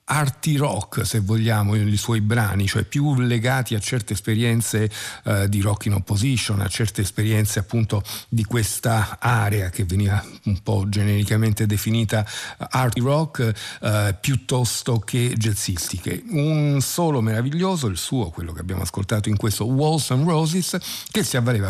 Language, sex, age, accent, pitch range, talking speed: Italian, male, 50-69, native, 105-130 Hz, 150 wpm